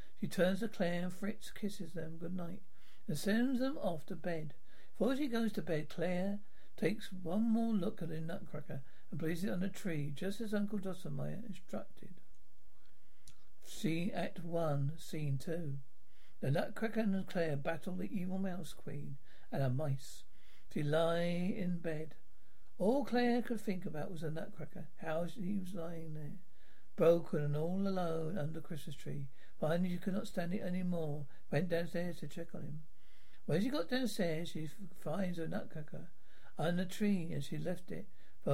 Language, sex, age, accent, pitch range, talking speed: English, male, 60-79, British, 160-200 Hz, 170 wpm